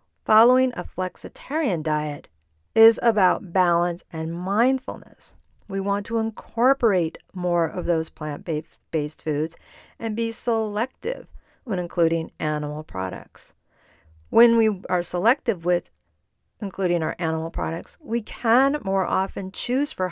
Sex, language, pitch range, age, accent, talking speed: female, English, 165-225 Hz, 50-69, American, 120 wpm